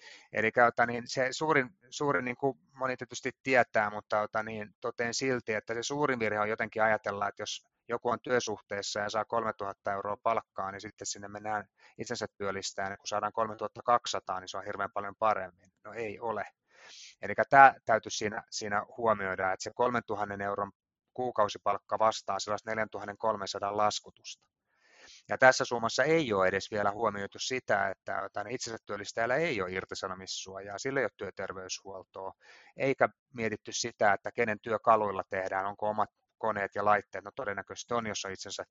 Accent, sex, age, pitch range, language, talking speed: native, male, 30-49, 100-120 Hz, Finnish, 155 wpm